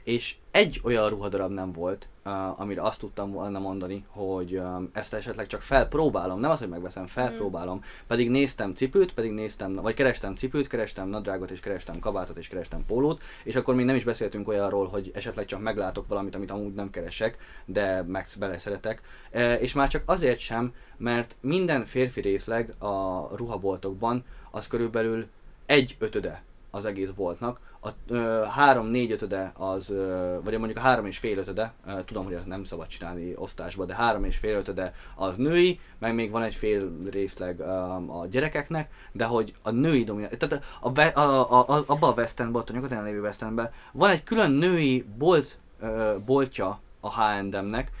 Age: 20-39